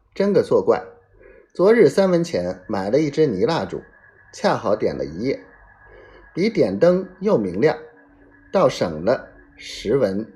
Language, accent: Chinese, native